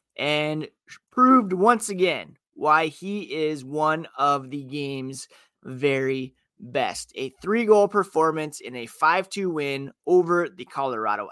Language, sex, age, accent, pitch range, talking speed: English, male, 30-49, American, 135-175 Hz, 120 wpm